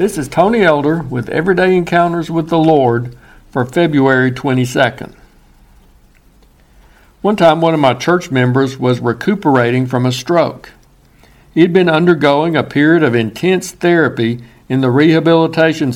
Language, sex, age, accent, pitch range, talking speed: English, male, 60-79, American, 130-165 Hz, 135 wpm